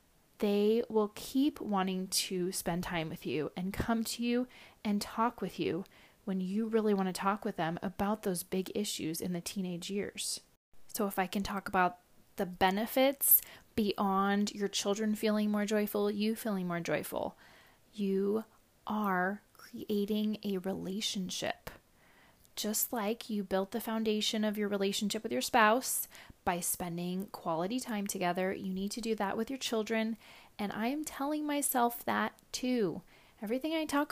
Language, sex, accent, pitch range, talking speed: English, female, American, 190-225 Hz, 160 wpm